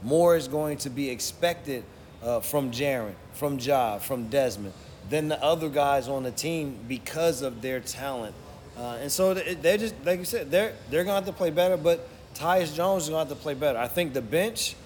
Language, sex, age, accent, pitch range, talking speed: English, male, 30-49, American, 120-155 Hz, 220 wpm